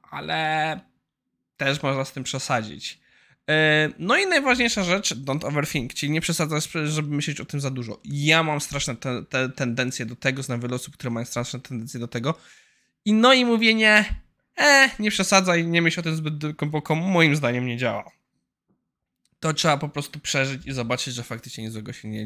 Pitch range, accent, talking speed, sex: 135-170 Hz, native, 185 wpm, male